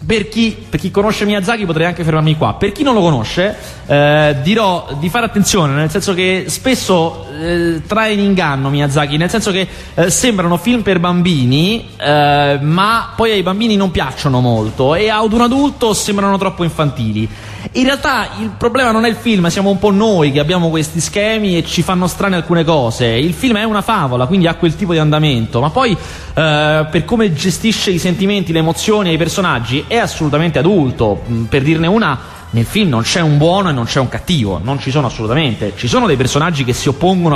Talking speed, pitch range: 200 wpm, 135-195 Hz